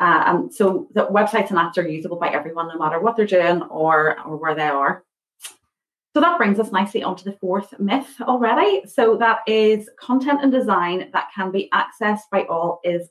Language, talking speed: English, 200 wpm